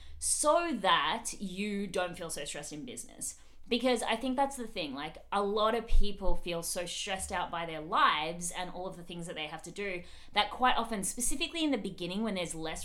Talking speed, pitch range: 220 wpm, 170-220 Hz